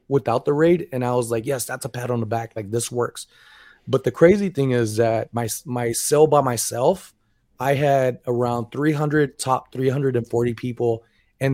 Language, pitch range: English, 115-135 Hz